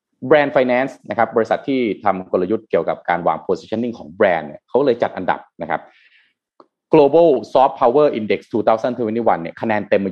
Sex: male